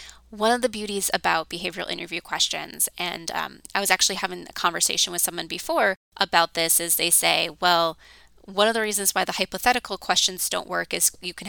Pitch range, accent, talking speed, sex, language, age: 175-215 Hz, American, 200 wpm, female, English, 20-39